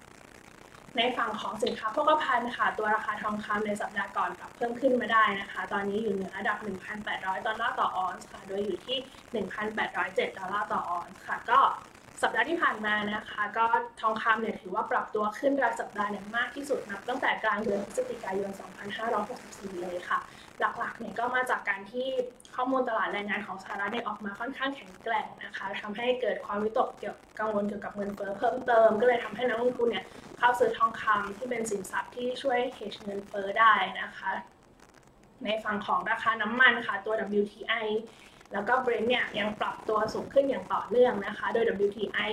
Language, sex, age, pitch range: Thai, female, 20-39, 205-245 Hz